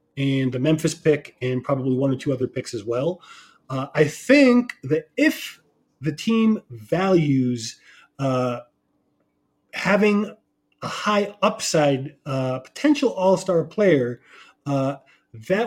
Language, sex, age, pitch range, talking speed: English, male, 30-49, 135-180 Hz, 125 wpm